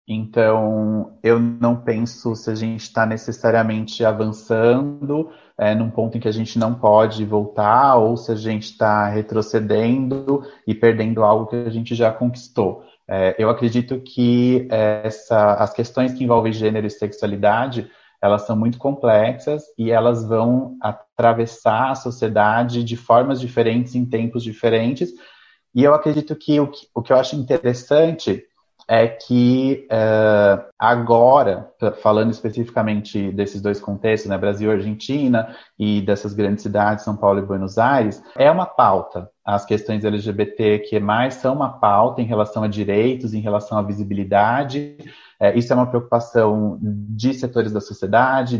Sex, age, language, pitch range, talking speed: male, 30-49, Portuguese, 105-125 Hz, 150 wpm